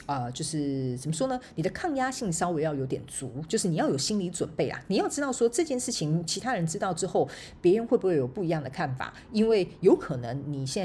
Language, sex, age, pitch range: Chinese, female, 40-59, 145-205 Hz